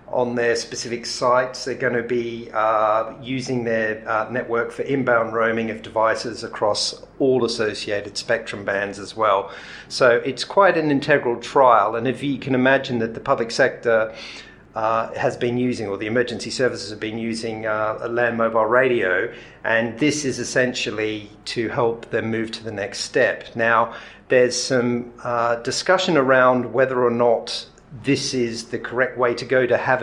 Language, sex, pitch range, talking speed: English, male, 115-130 Hz, 170 wpm